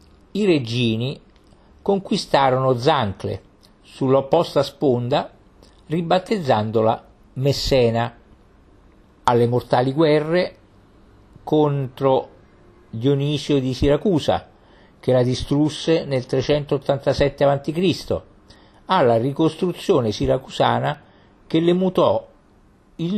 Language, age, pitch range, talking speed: Italian, 50-69, 105-150 Hz, 70 wpm